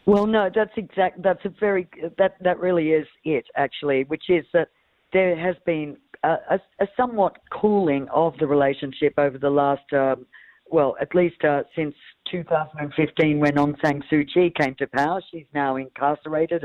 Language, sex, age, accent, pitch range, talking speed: English, female, 50-69, Australian, 130-170 Hz, 175 wpm